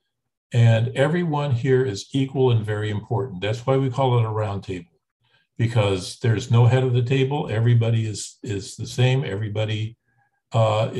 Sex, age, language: male, 50-69, English